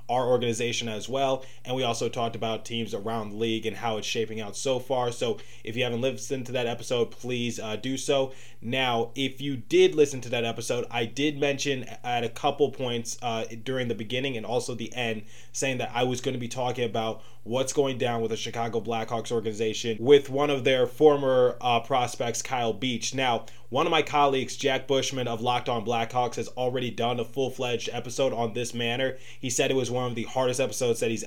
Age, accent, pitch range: 20-39, American, 115-130 Hz